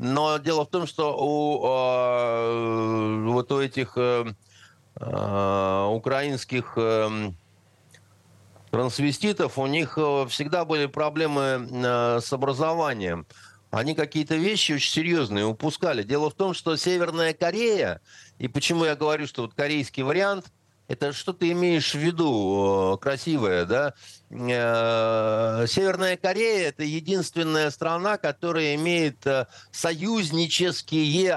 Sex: male